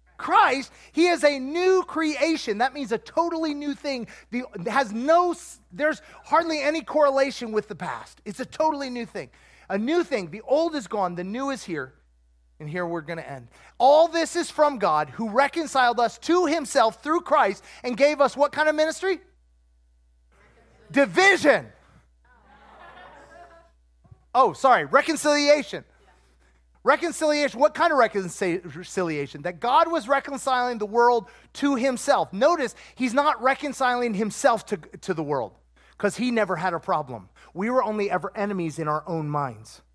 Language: English